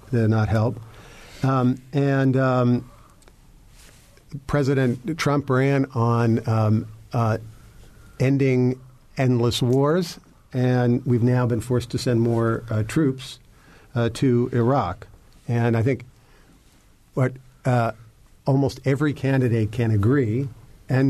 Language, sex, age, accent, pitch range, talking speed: English, male, 50-69, American, 110-130 Hz, 110 wpm